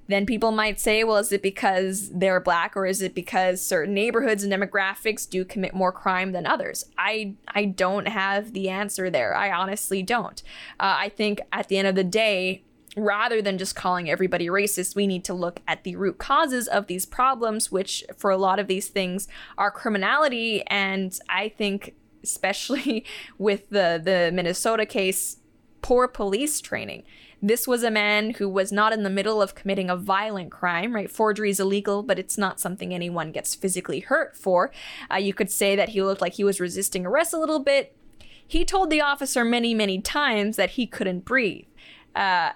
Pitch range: 190-225 Hz